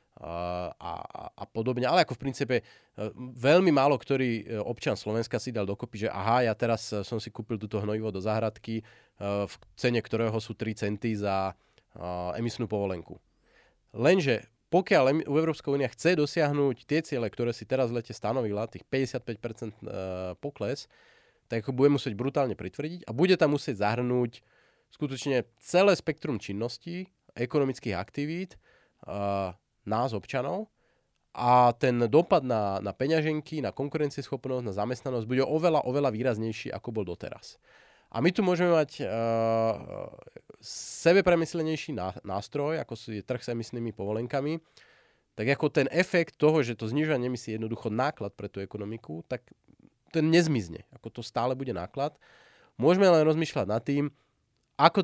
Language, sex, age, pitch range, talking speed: Slovak, male, 30-49, 110-145 Hz, 140 wpm